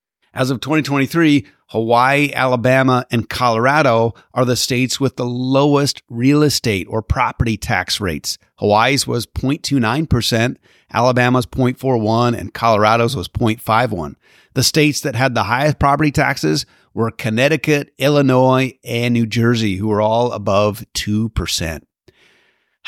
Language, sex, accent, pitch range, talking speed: English, male, American, 105-130 Hz, 125 wpm